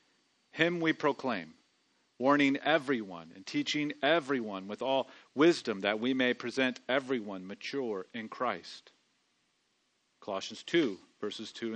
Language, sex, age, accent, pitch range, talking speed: English, male, 40-59, American, 120-180 Hz, 115 wpm